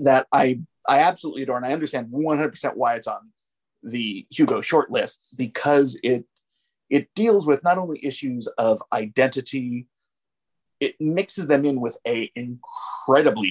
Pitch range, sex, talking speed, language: 120-160 Hz, male, 140 wpm, English